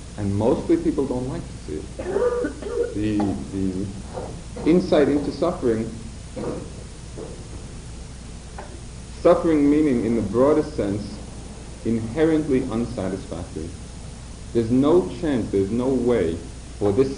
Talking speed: 100 wpm